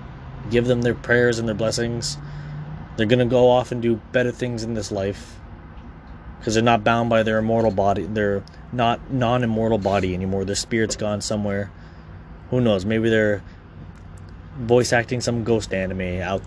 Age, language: 20-39, English